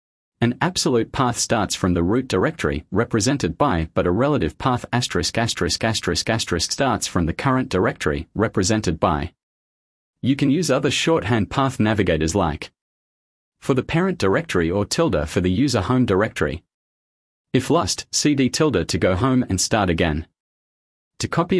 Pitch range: 90-125 Hz